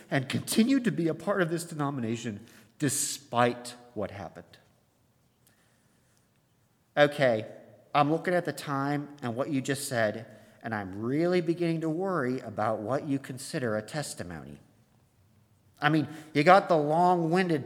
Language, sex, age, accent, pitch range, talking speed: English, male, 40-59, American, 120-160 Hz, 140 wpm